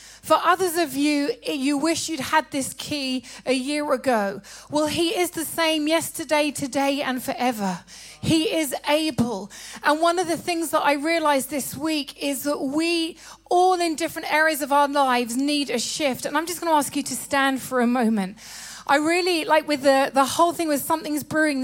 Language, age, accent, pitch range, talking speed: English, 30-49, British, 270-330 Hz, 195 wpm